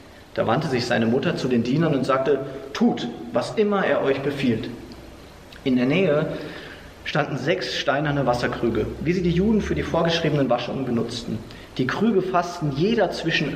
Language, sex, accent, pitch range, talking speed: German, male, German, 125-180 Hz, 165 wpm